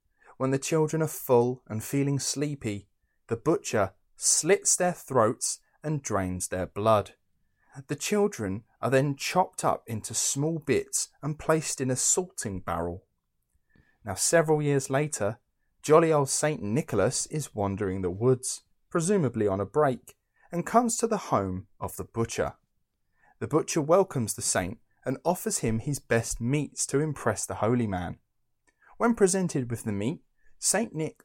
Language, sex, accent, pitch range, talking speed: English, male, British, 105-150 Hz, 150 wpm